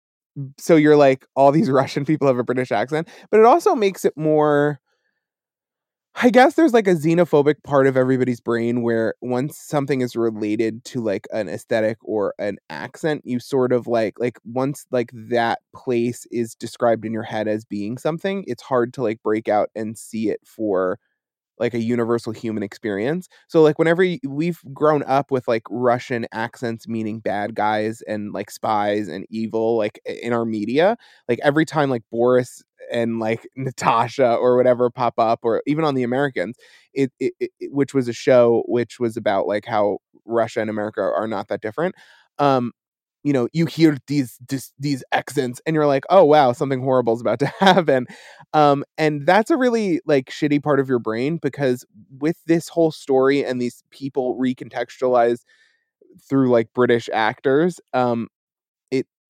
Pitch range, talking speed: 115-150 Hz, 175 wpm